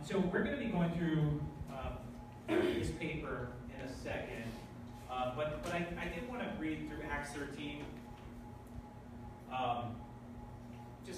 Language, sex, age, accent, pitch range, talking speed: English, male, 30-49, American, 120-155 Hz, 145 wpm